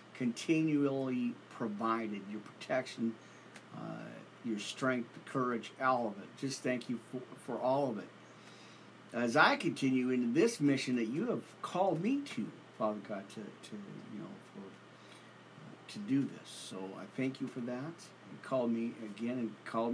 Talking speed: 165 wpm